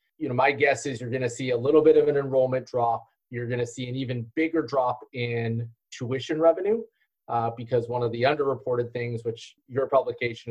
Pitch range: 120-145 Hz